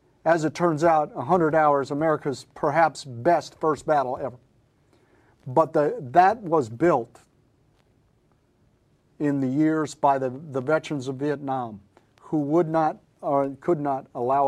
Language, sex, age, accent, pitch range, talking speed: English, male, 50-69, American, 125-150 Hz, 135 wpm